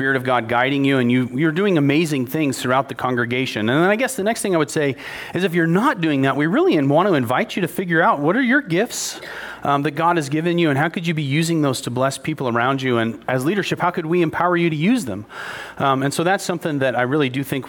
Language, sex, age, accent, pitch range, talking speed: English, male, 40-59, American, 130-175 Hz, 280 wpm